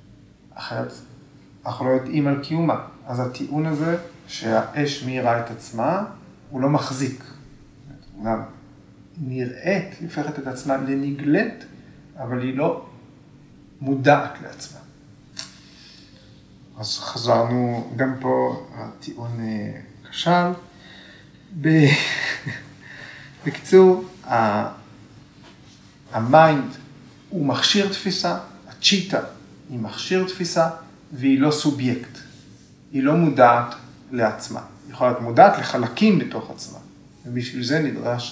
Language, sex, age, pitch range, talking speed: Hebrew, male, 40-59, 120-150 Hz, 90 wpm